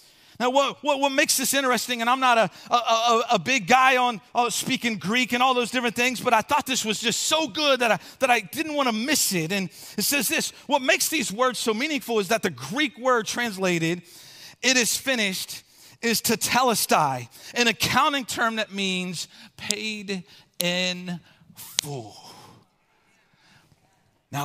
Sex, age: male, 40-59